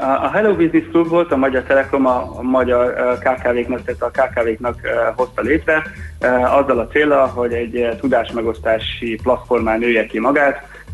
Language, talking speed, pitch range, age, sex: Hungarian, 150 wpm, 115-130 Hz, 30-49, male